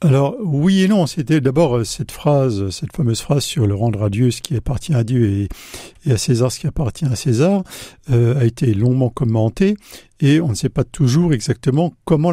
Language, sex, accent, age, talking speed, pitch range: French, male, French, 60-79, 205 wpm, 120-170 Hz